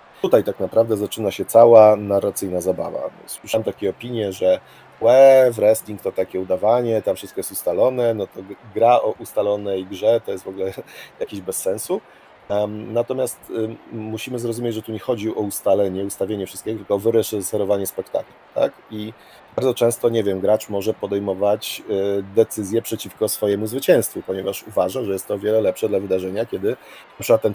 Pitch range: 95-110 Hz